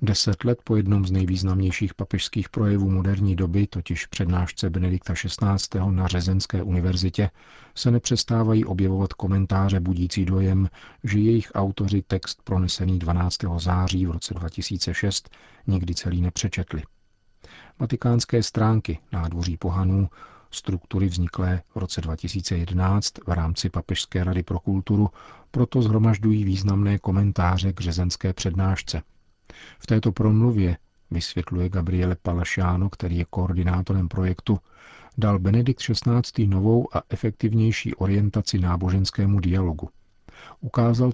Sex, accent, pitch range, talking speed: male, native, 90-105 Hz, 115 wpm